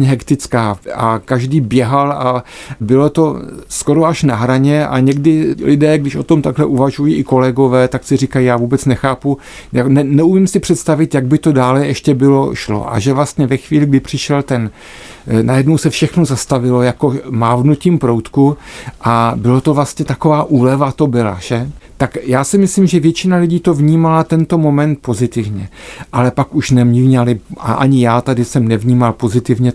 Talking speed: 170 wpm